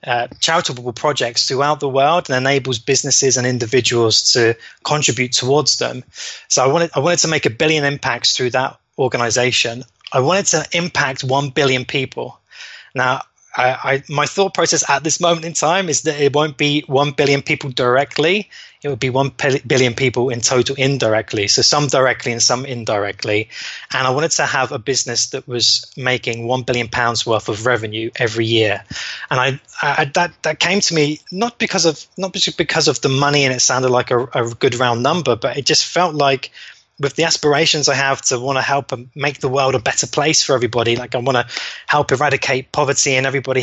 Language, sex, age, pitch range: English, male, 20-39, 125-145 Hz